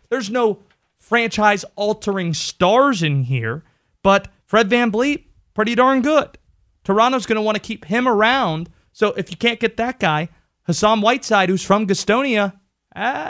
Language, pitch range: English, 170-220 Hz